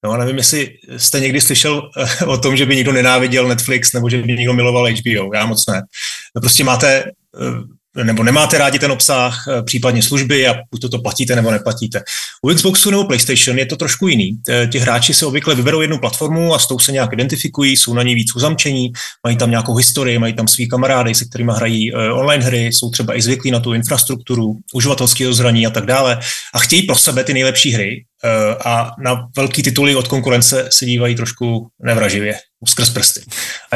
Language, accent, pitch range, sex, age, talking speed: Czech, native, 120-140 Hz, male, 30-49, 190 wpm